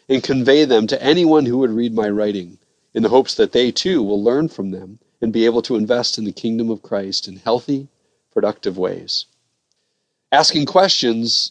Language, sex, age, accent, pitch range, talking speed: English, male, 40-59, American, 115-150 Hz, 190 wpm